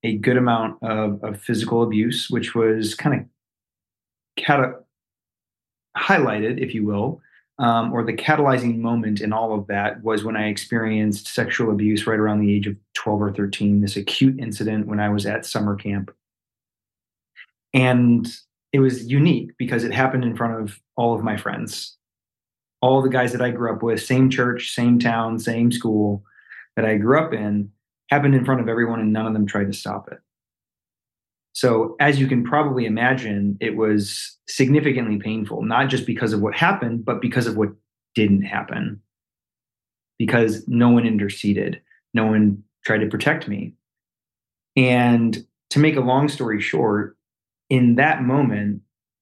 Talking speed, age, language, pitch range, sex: 165 wpm, 30-49, English, 105-125 Hz, male